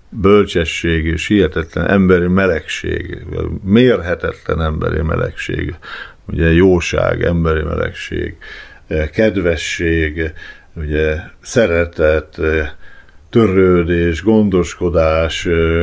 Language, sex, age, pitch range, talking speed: Hungarian, male, 50-69, 85-105 Hz, 65 wpm